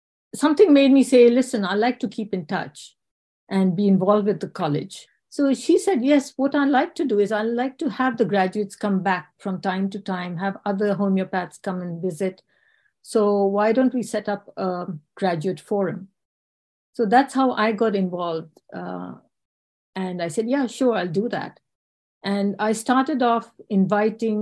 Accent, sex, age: Indian, female, 50-69